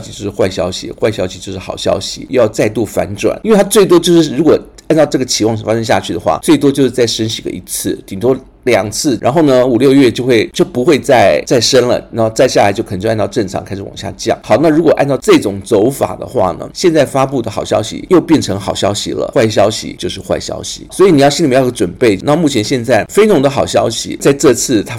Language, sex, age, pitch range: Chinese, male, 50-69, 95-130 Hz